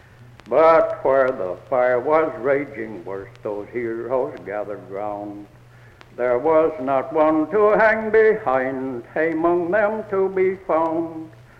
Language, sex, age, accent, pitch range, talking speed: English, male, 60-79, American, 120-175 Hz, 120 wpm